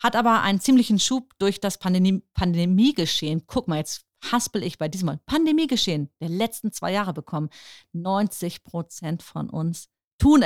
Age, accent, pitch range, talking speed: 40-59, German, 165-225 Hz, 155 wpm